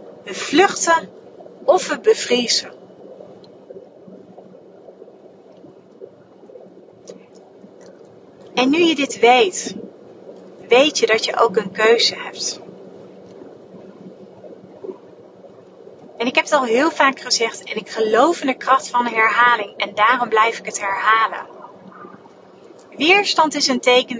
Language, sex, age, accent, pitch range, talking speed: Dutch, female, 30-49, Dutch, 225-330 Hz, 110 wpm